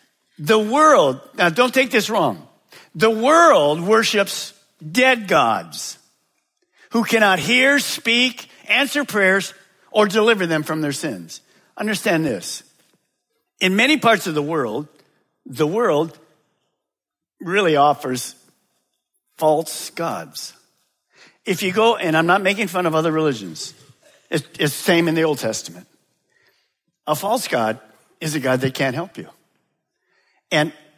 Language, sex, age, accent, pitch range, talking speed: English, male, 50-69, American, 155-215 Hz, 130 wpm